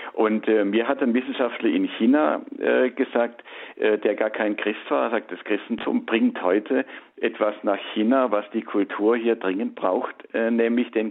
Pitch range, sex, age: 105-125 Hz, male, 50-69